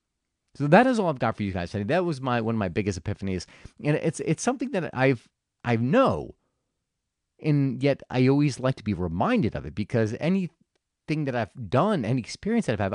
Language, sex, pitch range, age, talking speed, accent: English, male, 100-165 Hz, 30-49, 205 wpm, American